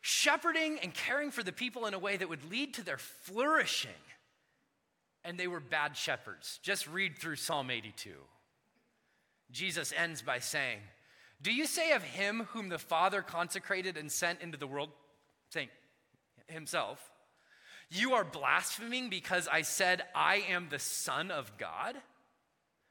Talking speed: 150 wpm